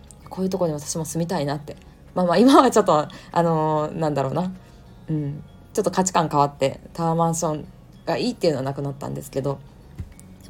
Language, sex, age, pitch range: Japanese, female, 20-39, 145-205 Hz